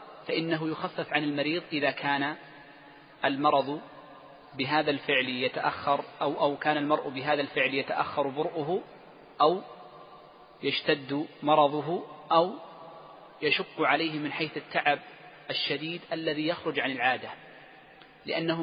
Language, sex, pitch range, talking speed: Arabic, male, 140-160 Hz, 105 wpm